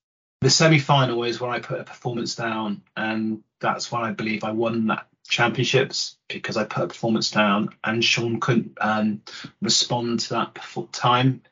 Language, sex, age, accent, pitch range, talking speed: English, male, 30-49, British, 110-135 Hz, 165 wpm